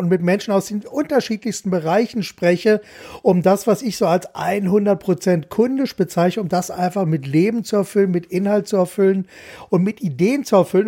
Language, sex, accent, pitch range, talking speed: German, male, German, 160-195 Hz, 180 wpm